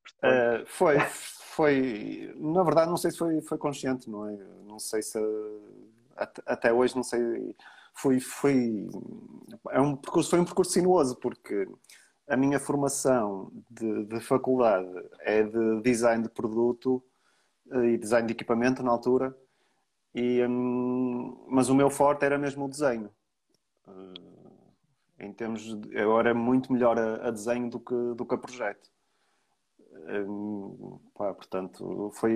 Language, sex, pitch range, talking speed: Portuguese, male, 105-125 Hz, 140 wpm